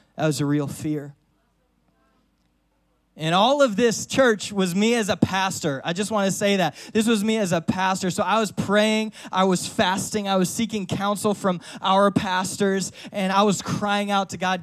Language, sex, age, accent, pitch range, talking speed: English, male, 20-39, American, 165-220 Hz, 195 wpm